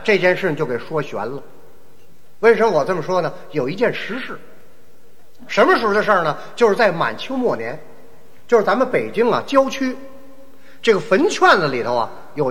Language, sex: Chinese, male